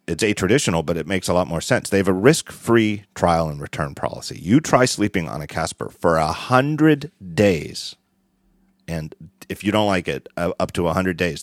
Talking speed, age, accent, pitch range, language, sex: 205 wpm, 40-59, American, 80-100 Hz, English, male